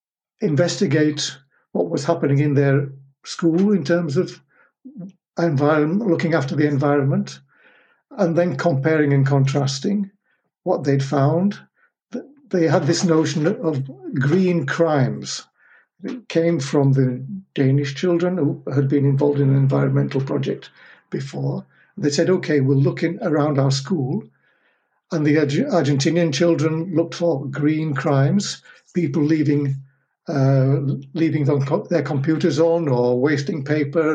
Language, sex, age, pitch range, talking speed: Danish, male, 60-79, 140-170 Hz, 125 wpm